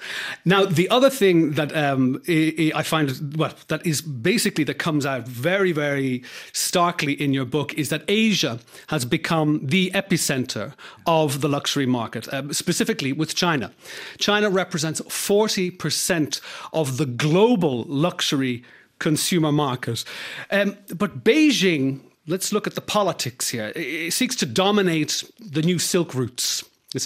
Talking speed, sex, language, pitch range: 140 wpm, male, English, 145-190 Hz